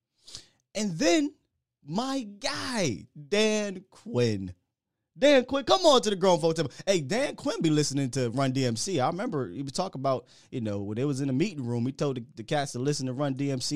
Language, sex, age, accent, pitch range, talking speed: English, male, 20-39, American, 130-170 Hz, 210 wpm